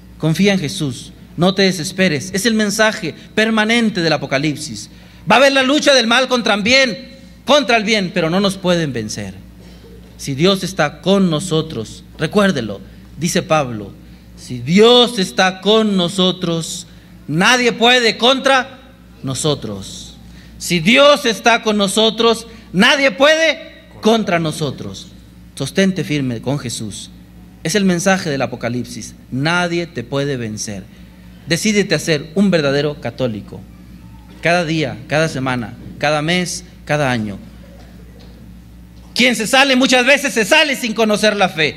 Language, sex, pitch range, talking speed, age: Spanish, male, 130-215 Hz, 135 wpm, 40-59